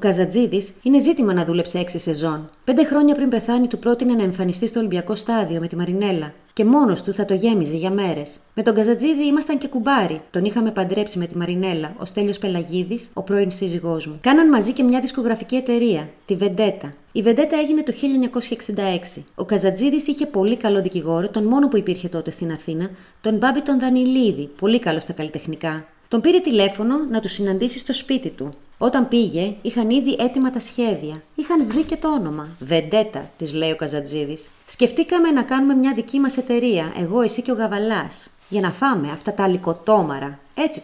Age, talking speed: 30-49, 185 wpm